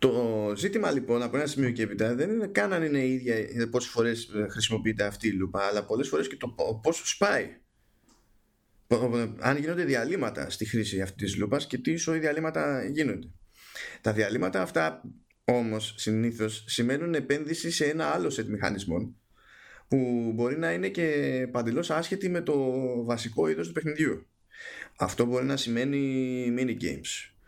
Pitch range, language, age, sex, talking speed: 110-135 Hz, Greek, 20-39, male, 155 wpm